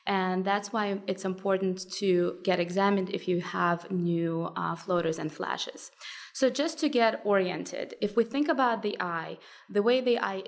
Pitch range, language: 180-215 Hz, English